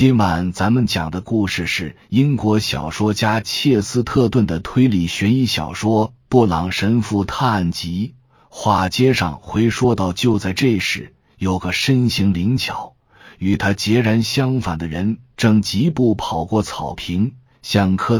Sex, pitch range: male, 90-120 Hz